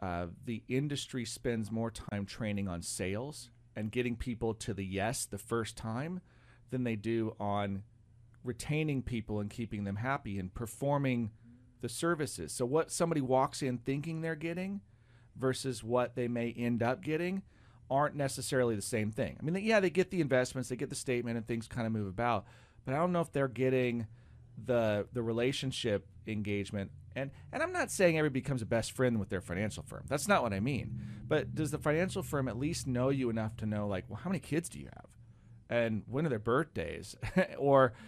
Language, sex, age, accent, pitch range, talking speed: English, male, 40-59, American, 110-145 Hz, 195 wpm